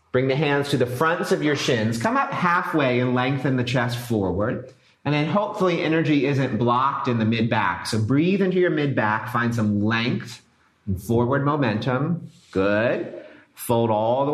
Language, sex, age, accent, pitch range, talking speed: English, male, 40-59, American, 110-155 Hz, 170 wpm